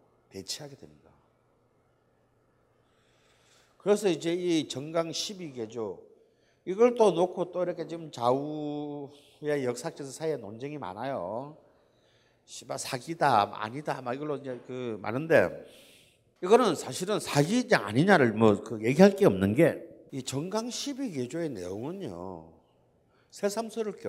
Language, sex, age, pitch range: Korean, male, 50-69, 135-205 Hz